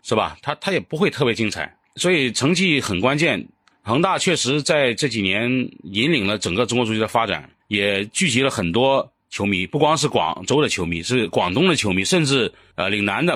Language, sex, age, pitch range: Chinese, male, 30-49, 105-150 Hz